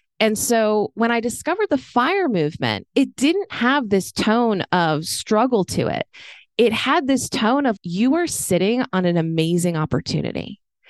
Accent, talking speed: American, 160 wpm